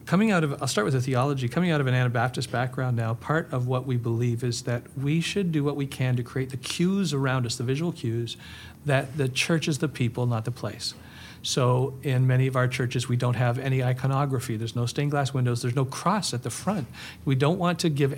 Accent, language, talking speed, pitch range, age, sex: American, English, 240 wpm, 120-140 Hz, 50-69, male